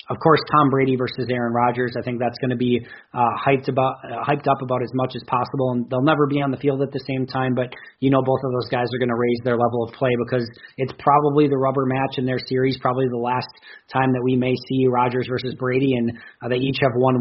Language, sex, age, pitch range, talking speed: English, male, 30-49, 125-135 Hz, 260 wpm